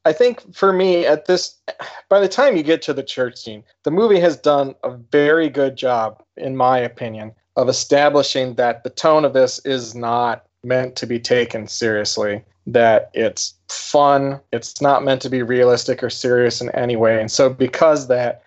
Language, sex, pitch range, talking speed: English, male, 120-145 Hz, 190 wpm